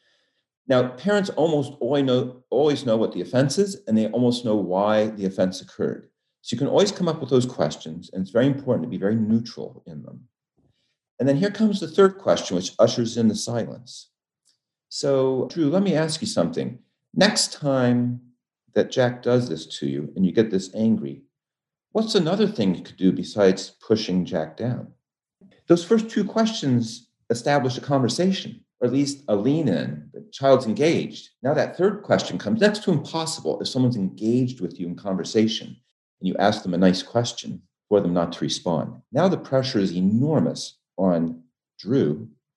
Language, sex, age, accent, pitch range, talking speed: English, male, 50-69, American, 100-150 Hz, 180 wpm